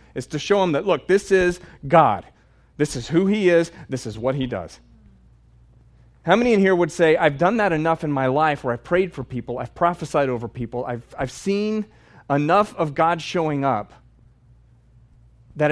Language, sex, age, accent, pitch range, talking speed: English, male, 30-49, American, 120-170 Hz, 190 wpm